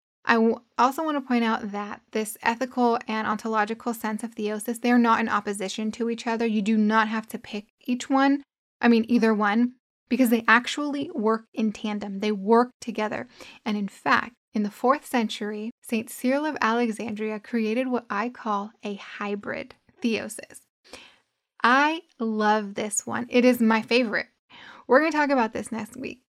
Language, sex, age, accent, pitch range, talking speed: English, female, 10-29, American, 215-250 Hz, 175 wpm